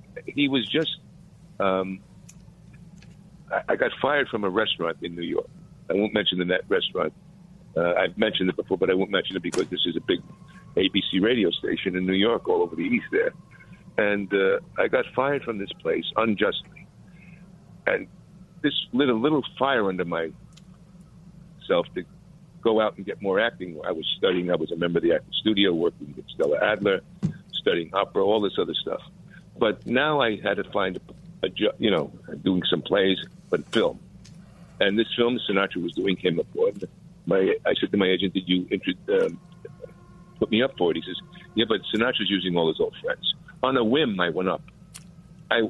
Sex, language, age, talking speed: male, English, 50-69, 195 wpm